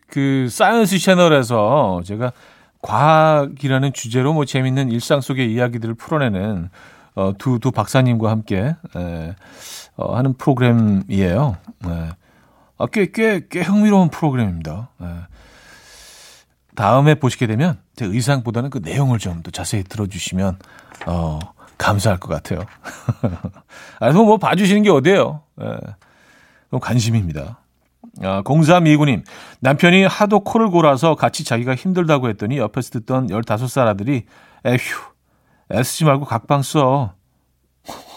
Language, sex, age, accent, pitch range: Korean, male, 40-59, native, 105-150 Hz